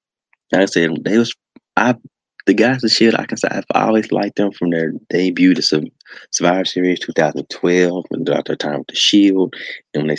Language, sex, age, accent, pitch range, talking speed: English, male, 30-49, American, 90-120 Hz, 205 wpm